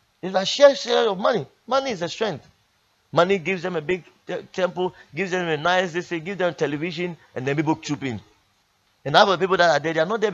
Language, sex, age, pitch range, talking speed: English, male, 30-49, 110-175 Hz, 230 wpm